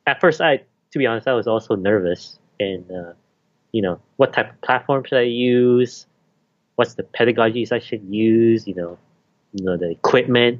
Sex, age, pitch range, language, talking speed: male, 30-49, 110-160 Hz, English, 185 wpm